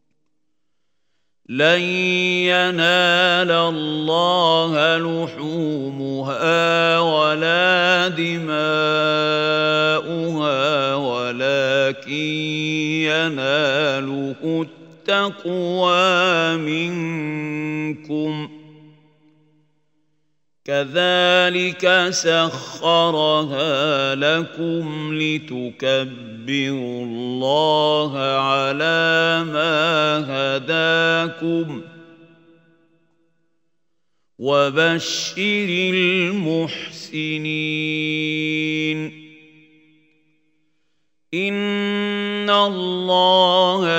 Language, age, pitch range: Arabic, 50-69, 155-170 Hz